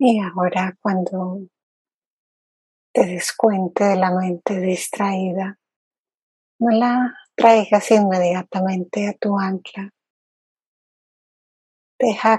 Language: English